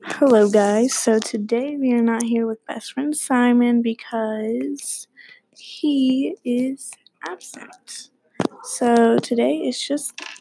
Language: English